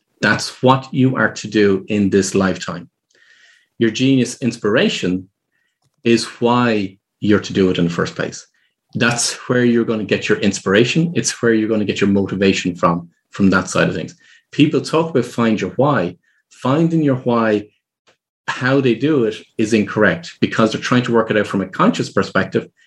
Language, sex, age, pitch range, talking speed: English, male, 30-49, 100-125 Hz, 185 wpm